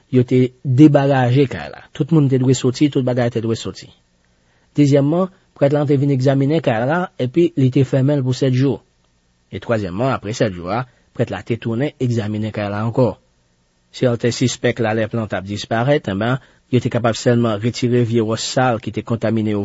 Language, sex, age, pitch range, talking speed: French, male, 40-59, 90-130 Hz, 195 wpm